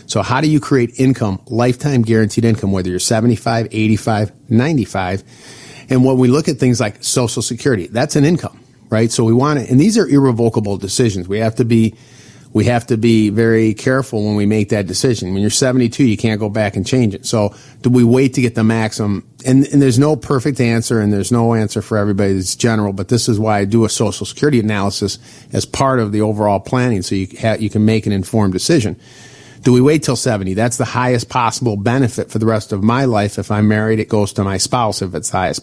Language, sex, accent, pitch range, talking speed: English, male, American, 105-130 Hz, 230 wpm